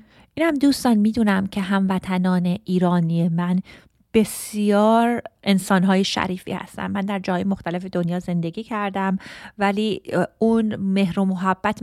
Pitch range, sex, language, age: 180-210 Hz, female, Persian, 30-49